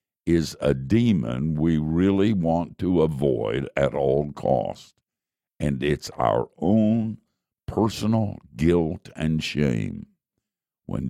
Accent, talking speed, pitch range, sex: American, 110 wpm, 70-90 Hz, male